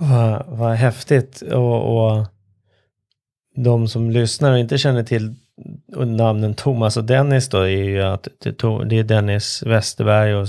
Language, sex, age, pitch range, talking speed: Swedish, male, 30-49, 105-125 Hz, 145 wpm